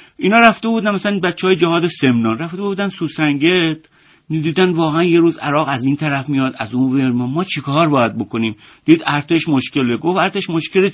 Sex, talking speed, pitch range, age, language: male, 185 wpm, 140-195 Hz, 50-69, Persian